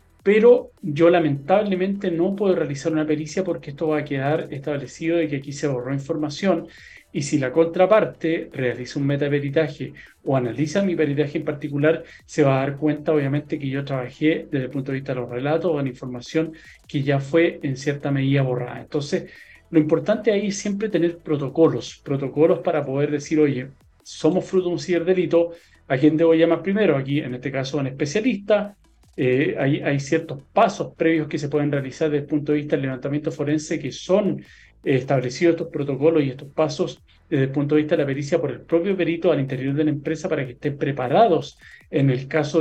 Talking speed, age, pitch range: 200 wpm, 40-59, 140-165 Hz